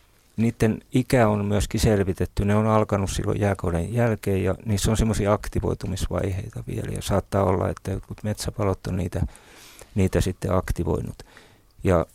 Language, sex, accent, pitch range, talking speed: Finnish, male, native, 95-110 Hz, 140 wpm